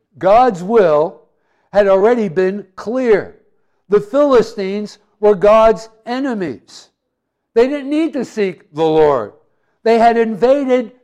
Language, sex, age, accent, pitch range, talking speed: English, male, 60-79, American, 160-225 Hz, 115 wpm